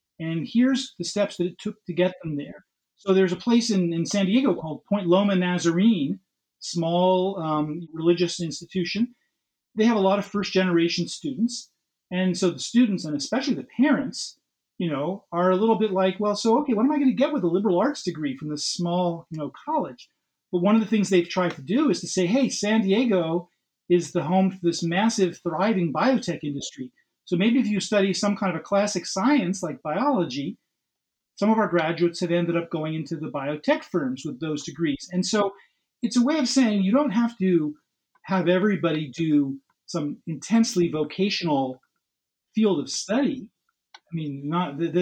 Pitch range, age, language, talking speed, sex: 170-215 Hz, 40-59, English, 190 wpm, male